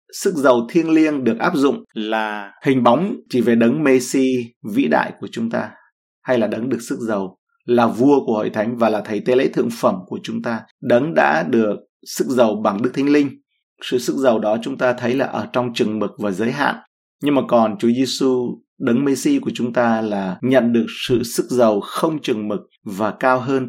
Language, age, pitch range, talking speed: Vietnamese, 30-49, 115-145 Hz, 220 wpm